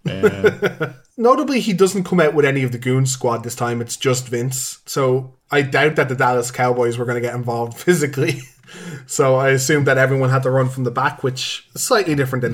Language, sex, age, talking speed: English, male, 20-39, 215 wpm